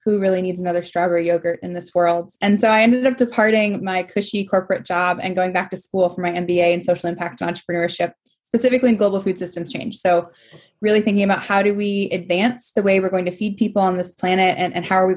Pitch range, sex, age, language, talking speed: 180-210 Hz, female, 20-39, English, 240 wpm